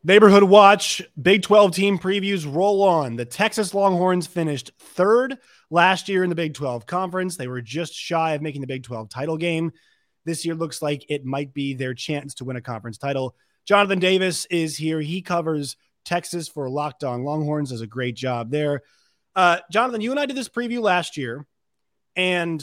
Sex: male